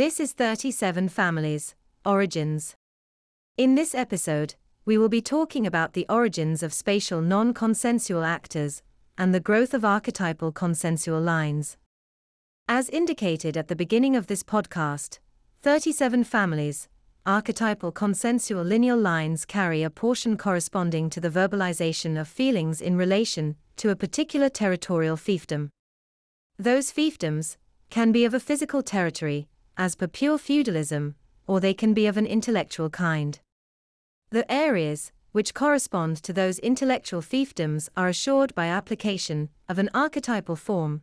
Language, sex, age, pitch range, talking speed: English, female, 40-59, 160-230 Hz, 135 wpm